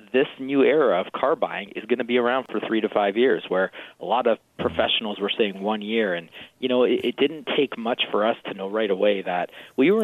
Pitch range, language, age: 110-135 Hz, English, 30-49